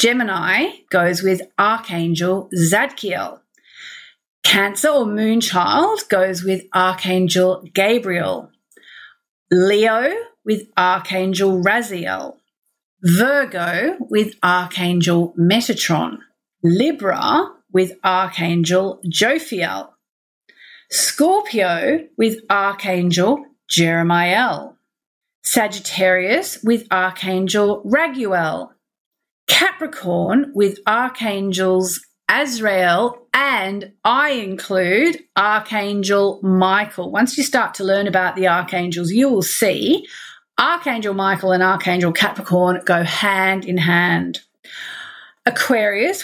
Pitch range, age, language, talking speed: 180-240 Hz, 30-49, English, 80 wpm